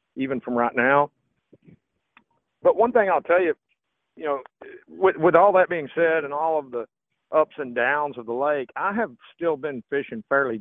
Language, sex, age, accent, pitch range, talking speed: English, male, 50-69, American, 120-145 Hz, 190 wpm